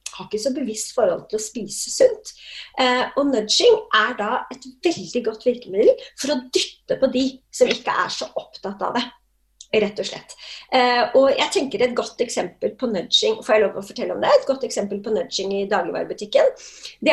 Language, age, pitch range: English, 30-49, 210-310 Hz